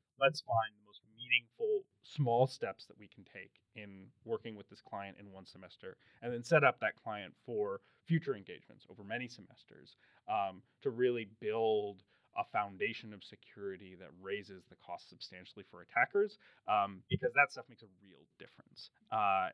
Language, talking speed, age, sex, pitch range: English, 170 wpm, 30-49, male, 100-145 Hz